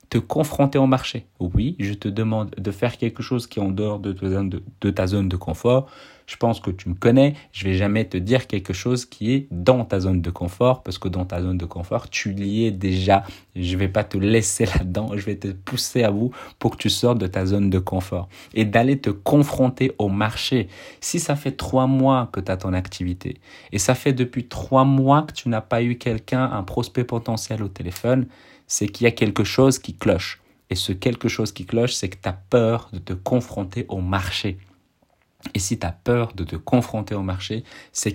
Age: 30-49